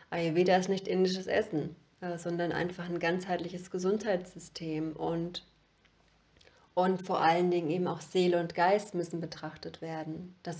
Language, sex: German, female